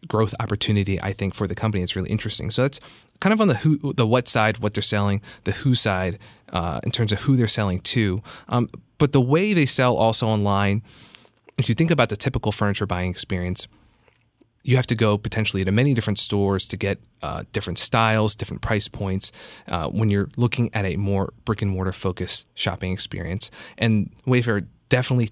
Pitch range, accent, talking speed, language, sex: 95-120 Hz, American, 200 wpm, English, male